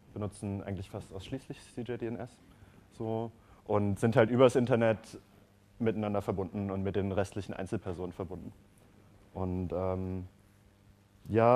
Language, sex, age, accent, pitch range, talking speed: German, male, 30-49, German, 100-115 Hz, 115 wpm